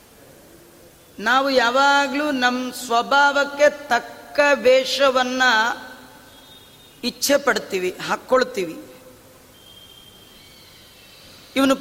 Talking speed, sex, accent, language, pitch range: 50 wpm, female, native, Kannada, 255-280 Hz